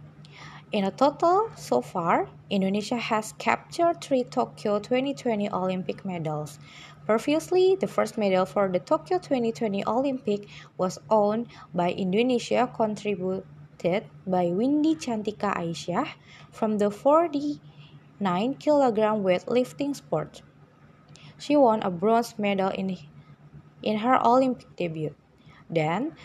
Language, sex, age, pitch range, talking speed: English, female, 20-39, 175-245 Hz, 115 wpm